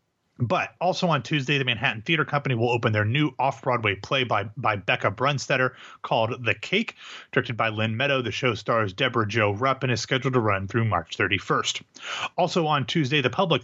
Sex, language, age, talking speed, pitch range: male, English, 30-49, 195 wpm, 115-145 Hz